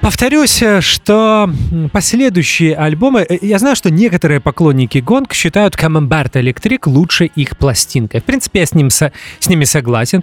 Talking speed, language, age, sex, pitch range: 135 wpm, English, 20-39, male, 135-180 Hz